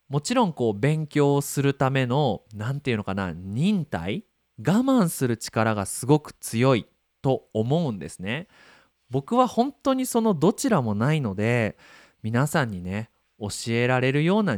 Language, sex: Japanese, male